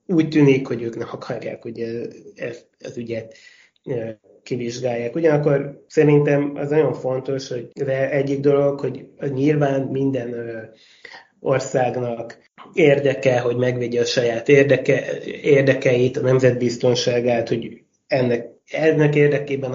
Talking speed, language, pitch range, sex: 115 wpm, Hungarian, 120-140 Hz, male